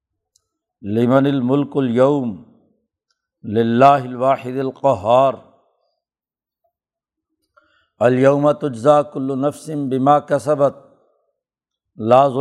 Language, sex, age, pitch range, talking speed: Urdu, male, 60-79, 125-140 Hz, 55 wpm